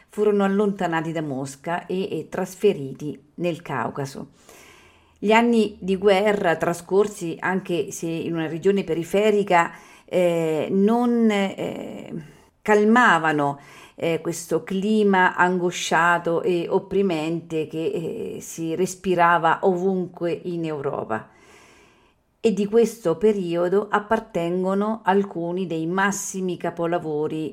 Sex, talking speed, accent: female, 100 wpm, native